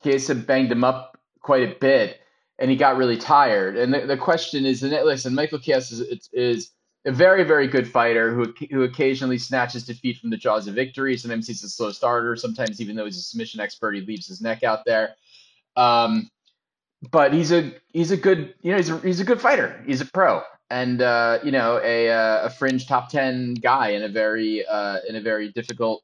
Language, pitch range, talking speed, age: English, 115-140 Hz, 215 wpm, 20-39